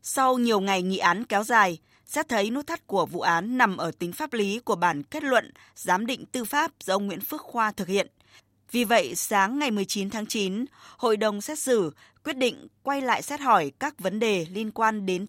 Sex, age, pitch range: female, 20-39, 190-245 Hz